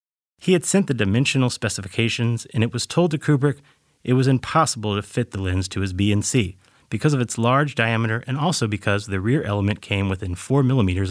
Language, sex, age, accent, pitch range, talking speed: English, male, 30-49, American, 100-135 Hz, 210 wpm